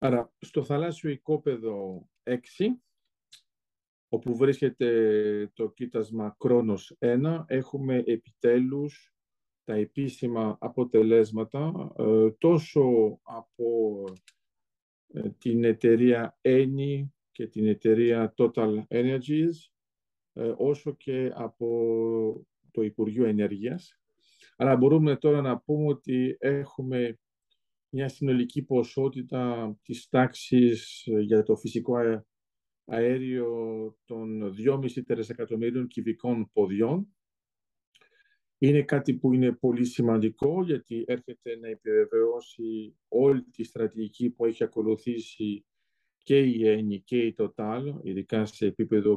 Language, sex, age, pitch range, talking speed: Greek, male, 50-69, 110-135 Hz, 95 wpm